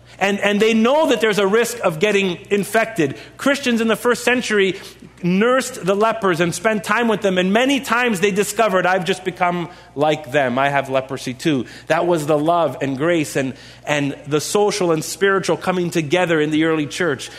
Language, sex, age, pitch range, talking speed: English, male, 30-49, 140-190 Hz, 195 wpm